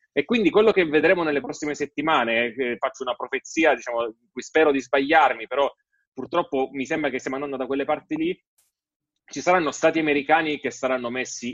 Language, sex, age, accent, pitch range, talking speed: Italian, male, 30-49, native, 125-150 Hz, 185 wpm